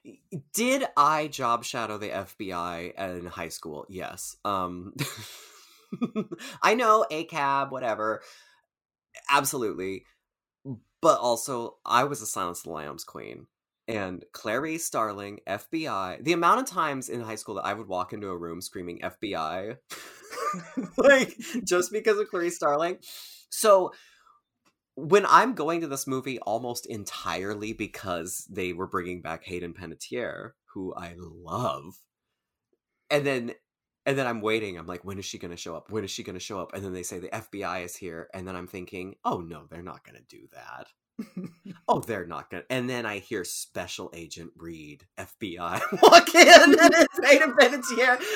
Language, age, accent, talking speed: English, 20-39, American, 160 wpm